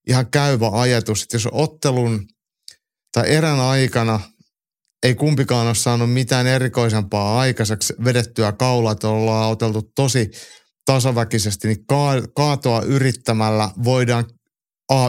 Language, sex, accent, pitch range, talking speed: Finnish, male, native, 110-130 Hz, 115 wpm